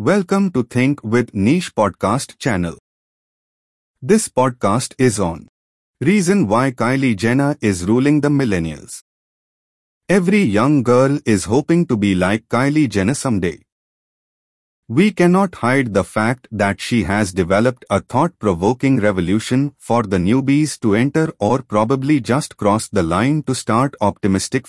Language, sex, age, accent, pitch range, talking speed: English, male, 30-49, Indian, 105-150 Hz, 135 wpm